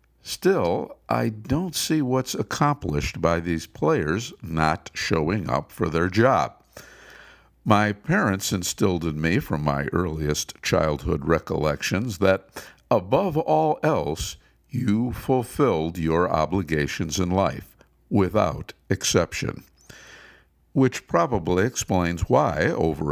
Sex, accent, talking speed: male, American, 110 wpm